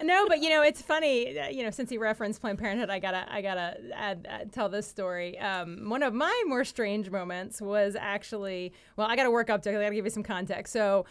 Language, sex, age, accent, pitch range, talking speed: English, female, 30-49, American, 190-270 Hz, 230 wpm